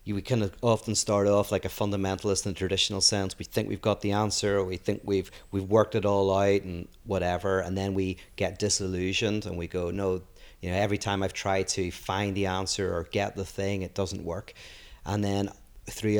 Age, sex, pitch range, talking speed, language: 30-49, male, 95-105 Hz, 220 wpm, English